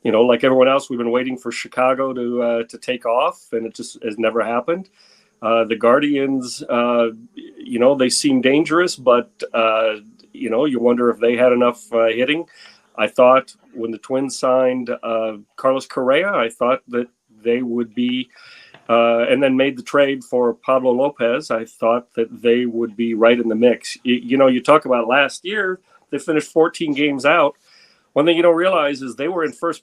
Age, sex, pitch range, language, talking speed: 40-59, male, 115-140 Hz, English, 200 wpm